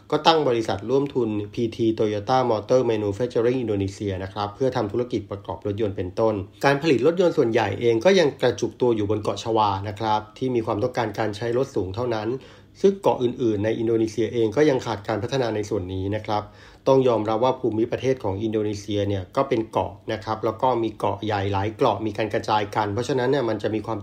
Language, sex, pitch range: Thai, male, 105-125 Hz